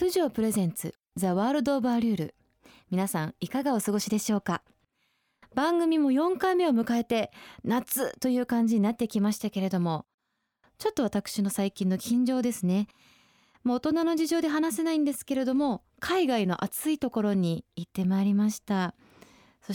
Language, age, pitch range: Japanese, 20-39, 175-250 Hz